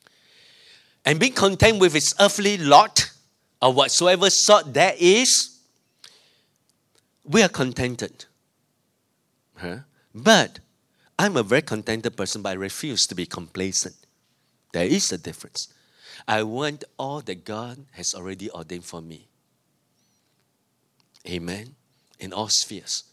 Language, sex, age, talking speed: English, male, 50-69, 120 wpm